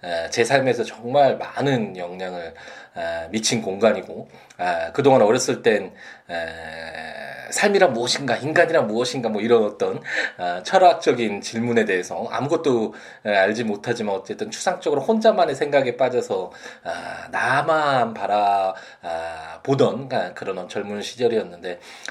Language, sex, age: Korean, male, 20-39